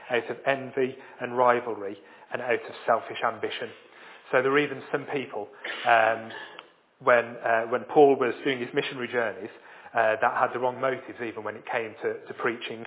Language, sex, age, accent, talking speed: English, male, 30-49, British, 180 wpm